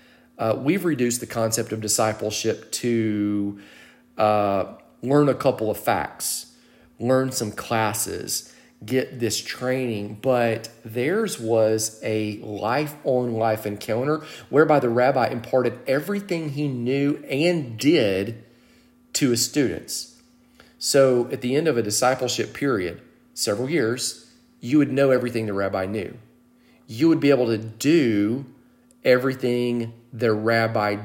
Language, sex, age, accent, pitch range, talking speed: English, male, 40-59, American, 110-135 Hz, 130 wpm